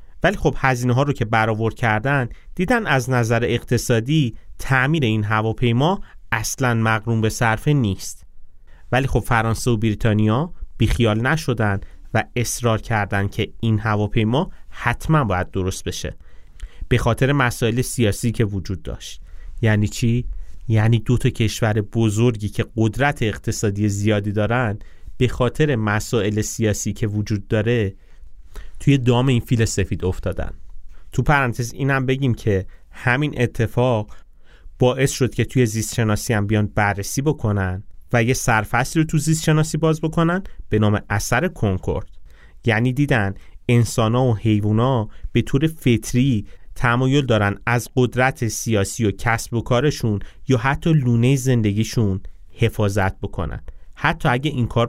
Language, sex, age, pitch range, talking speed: Persian, male, 30-49, 100-125 Hz, 135 wpm